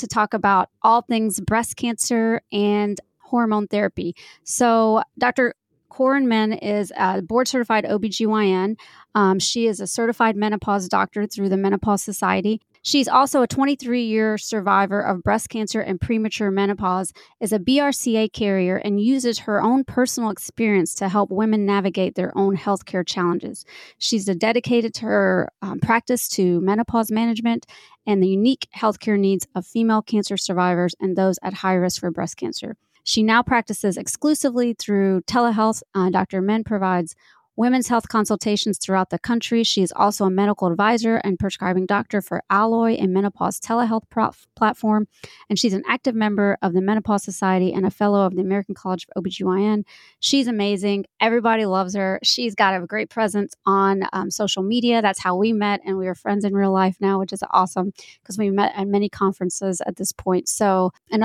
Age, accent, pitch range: 20-39, American, 190-225 Hz